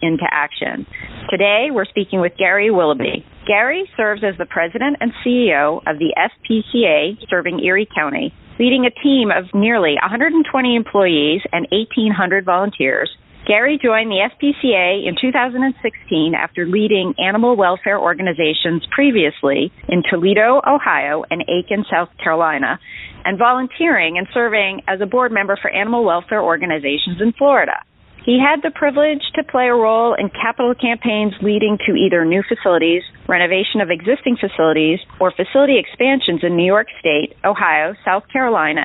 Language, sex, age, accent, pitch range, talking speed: English, female, 40-59, American, 175-230 Hz, 145 wpm